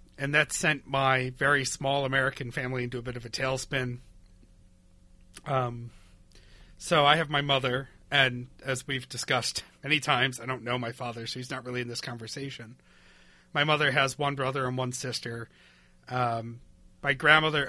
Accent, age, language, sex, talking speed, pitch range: American, 40-59, English, male, 165 wpm, 120-145 Hz